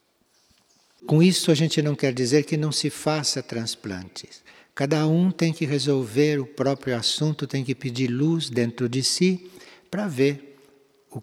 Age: 60-79